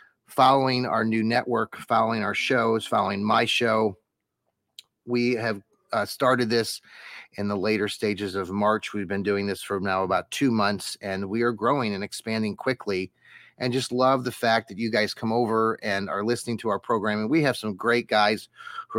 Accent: American